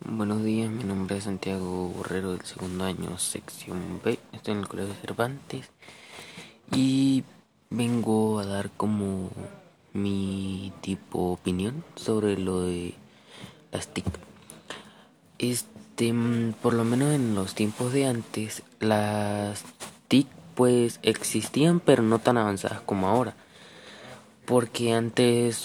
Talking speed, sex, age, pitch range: 125 wpm, male, 20-39, 95-115 Hz